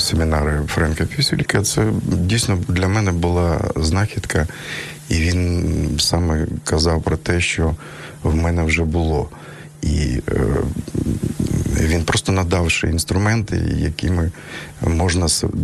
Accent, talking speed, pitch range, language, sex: native, 105 wpm, 80-100 Hz, Ukrainian, male